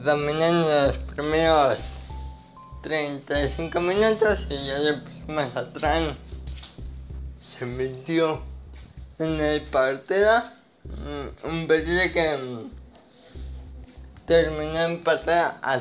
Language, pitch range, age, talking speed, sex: Spanish, 120-160 Hz, 20-39, 100 wpm, male